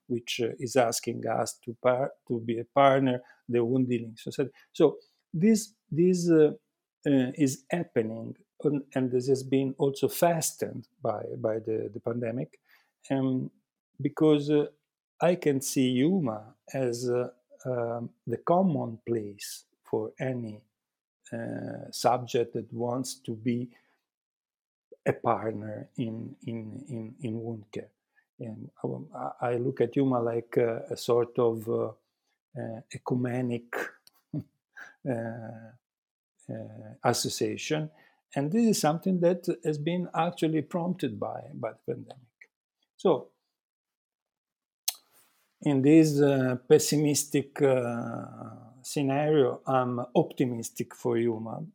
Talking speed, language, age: 120 wpm, English, 40-59